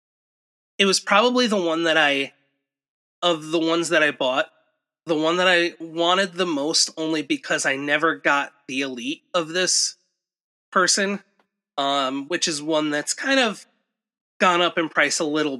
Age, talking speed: 30-49, 165 wpm